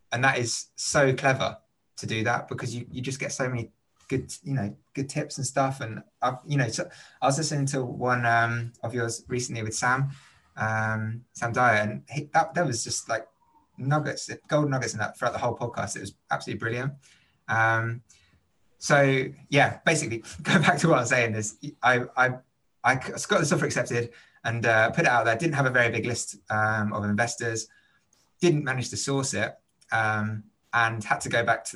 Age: 20-39